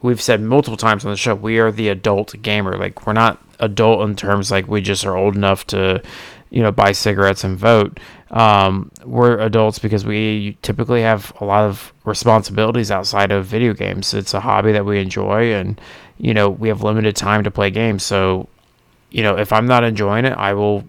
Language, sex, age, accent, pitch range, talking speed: English, male, 30-49, American, 100-115 Hz, 205 wpm